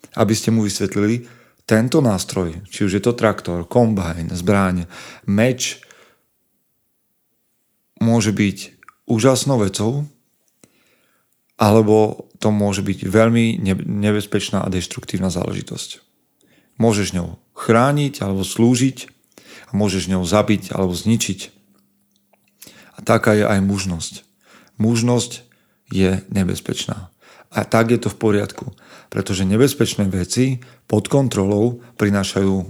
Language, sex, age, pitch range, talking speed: Slovak, male, 40-59, 95-115 Hz, 105 wpm